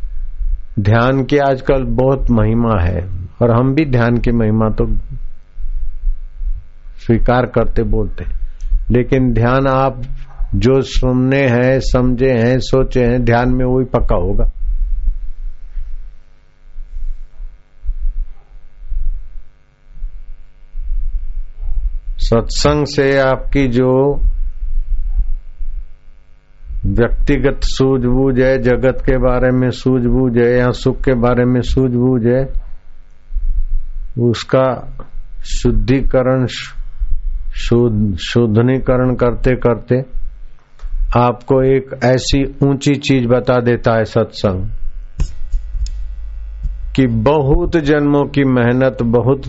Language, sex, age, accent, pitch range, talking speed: Hindi, male, 60-79, native, 75-130 Hz, 90 wpm